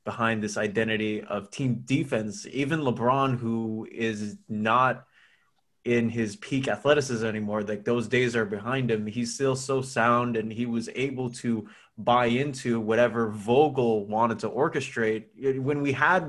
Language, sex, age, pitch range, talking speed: English, male, 20-39, 115-135 Hz, 150 wpm